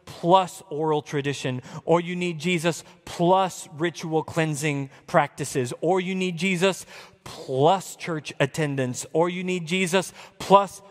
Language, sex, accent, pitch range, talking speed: English, male, American, 125-170 Hz, 125 wpm